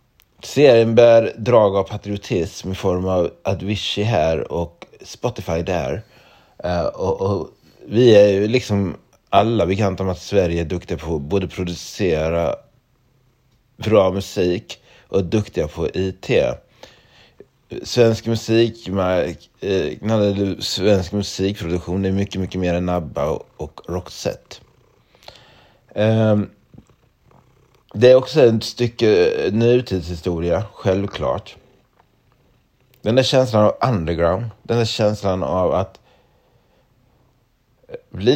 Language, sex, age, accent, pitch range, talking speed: Swedish, male, 30-49, native, 90-115 Hz, 110 wpm